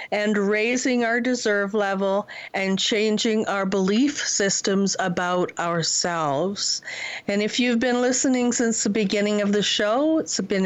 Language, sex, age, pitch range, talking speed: English, female, 50-69, 190-240 Hz, 140 wpm